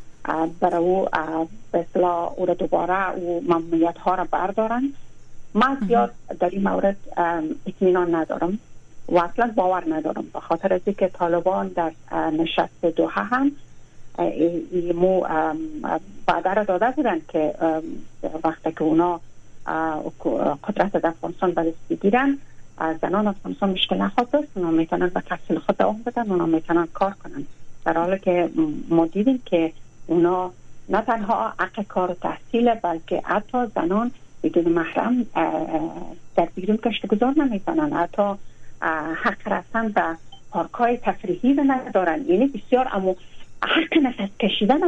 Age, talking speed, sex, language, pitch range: 40-59, 125 wpm, female, Persian, 170-225 Hz